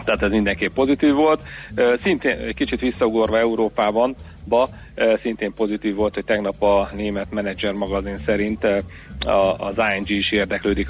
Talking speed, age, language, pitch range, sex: 140 wpm, 40-59, Hungarian, 95-105 Hz, male